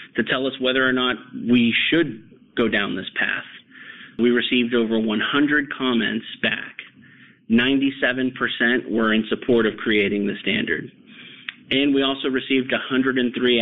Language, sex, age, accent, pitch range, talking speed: English, male, 40-59, American, 110-130 Hz, 135 wpm